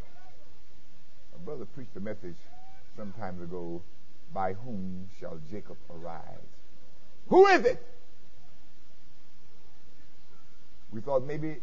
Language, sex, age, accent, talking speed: English, male, 50-69, American, 95 wpm